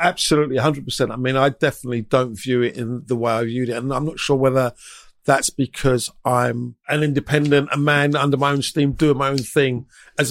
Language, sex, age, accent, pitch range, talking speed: English, male, 50-69, British, 125-150 Hz, 210 wpm